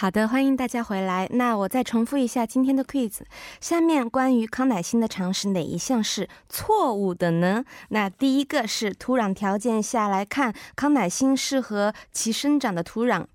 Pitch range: 200-270 Hz